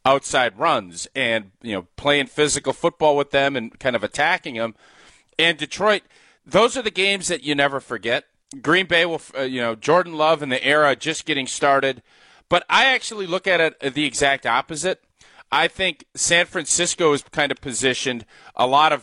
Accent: American